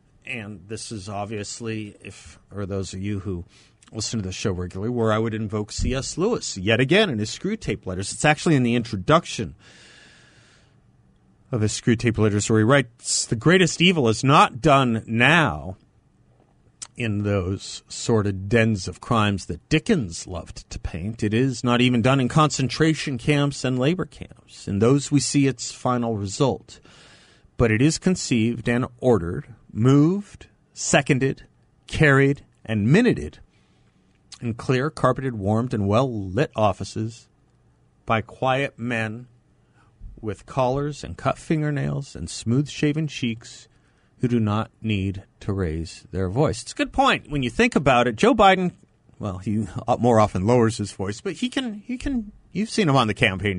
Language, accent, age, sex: English, American, 40-59, male